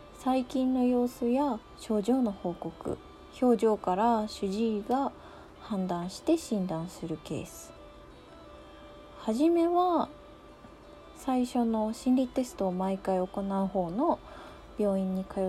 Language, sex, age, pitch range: Japanese, female, 20-39, 190-255 Hz